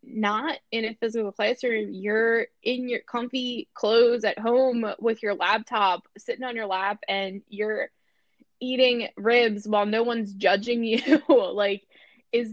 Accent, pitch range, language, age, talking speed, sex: American, 185-225 Hz, English, 10-29, 145 wpm, female